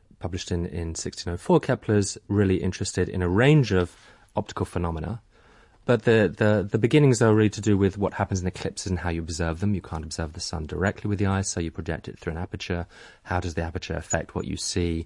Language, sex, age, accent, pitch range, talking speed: English, male, 30-49, British, 85-105 Hz, 225 wpm